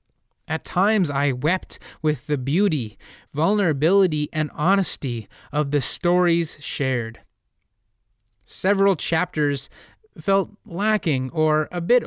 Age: 20-39